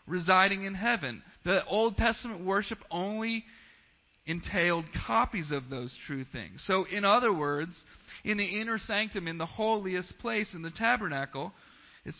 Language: English